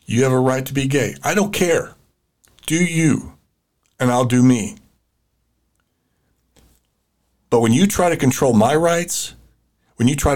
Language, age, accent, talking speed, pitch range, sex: English, 50-69, American, 155 wpm, 110-145 Hz, male